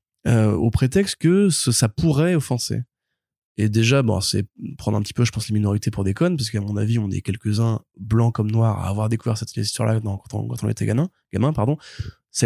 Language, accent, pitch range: French, French, 100-120 Hz